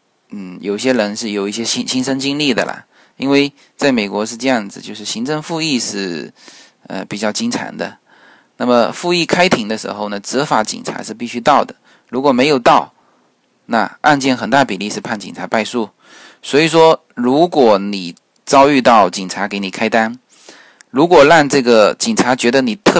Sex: male